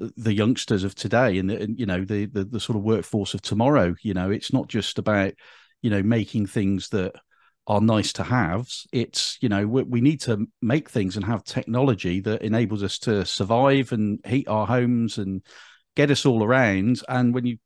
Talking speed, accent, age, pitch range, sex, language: 205 wpm, British, 40-59, 105-130 Hz, male, English